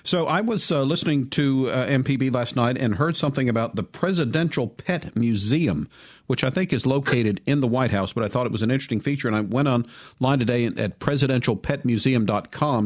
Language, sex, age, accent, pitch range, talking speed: English, male, 50-69, American, 110-140 Hz, 195 wpm